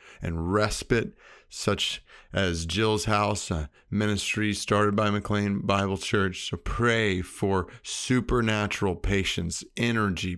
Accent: American